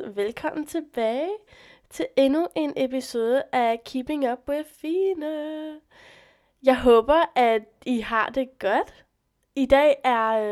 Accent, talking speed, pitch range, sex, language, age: native, 120 wpm, 210-275 Hz, female, Danish, 20-39